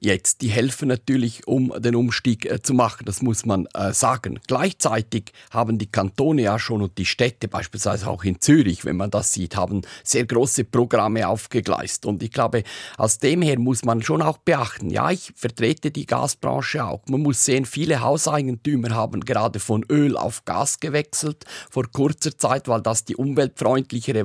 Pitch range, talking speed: 110-145 Hz, 180 wpm